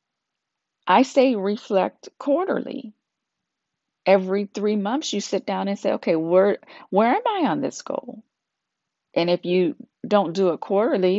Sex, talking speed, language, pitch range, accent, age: female, 145 wpm, English, 180-250 Hz, American, 40-59